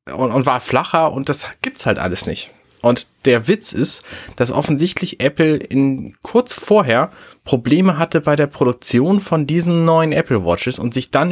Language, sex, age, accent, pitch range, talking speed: German, male, 30-49, German, 110-155 Hz, 175 wpm